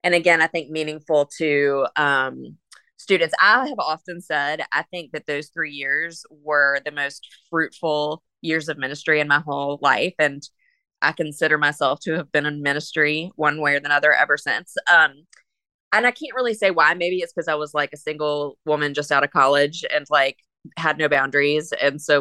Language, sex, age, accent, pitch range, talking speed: English, female, 20-39, American, 150-190 Hz, 195 wpm